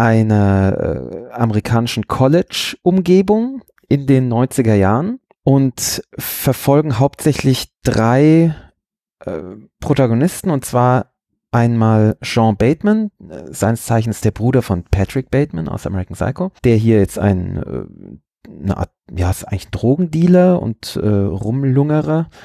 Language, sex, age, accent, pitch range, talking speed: German, male, 30-49, German, 105-135 Hz, 120 wpm